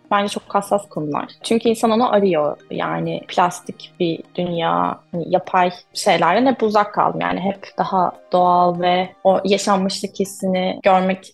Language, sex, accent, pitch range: Turkish, female, native, 185-245 Hz